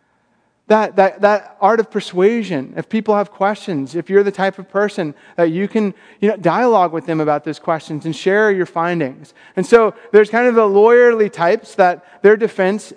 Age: 30-49